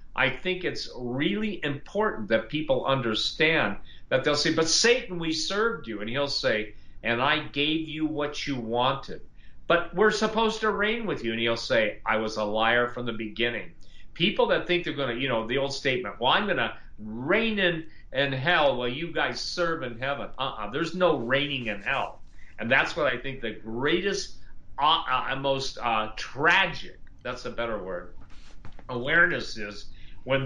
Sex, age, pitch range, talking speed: male, 50-69, 120-185 Hz, 185 wpm